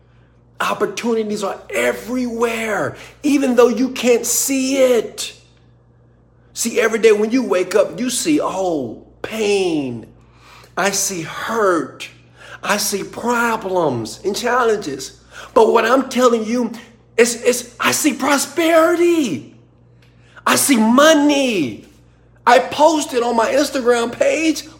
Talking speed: 115 wpm